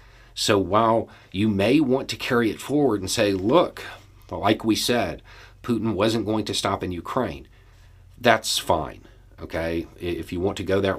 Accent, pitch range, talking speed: American, 80-110 Hz, 170 wpm